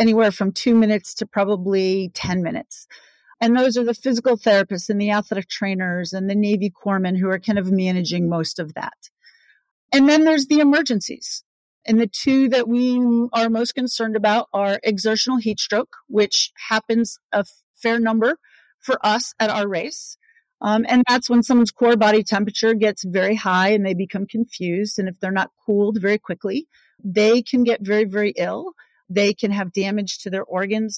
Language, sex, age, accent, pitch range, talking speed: English, female, 40-59, American, 195-235 Hz, 180 wpm